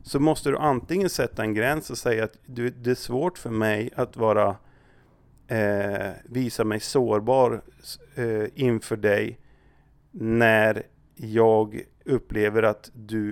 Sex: male